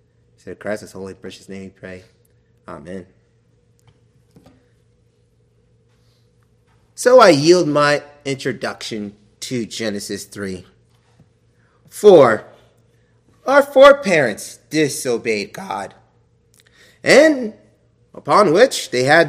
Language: English